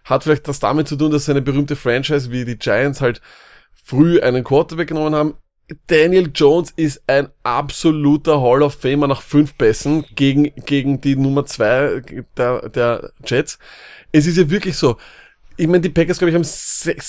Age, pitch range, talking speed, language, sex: 20-39, 130-160 Hz, 175 wpm, German, male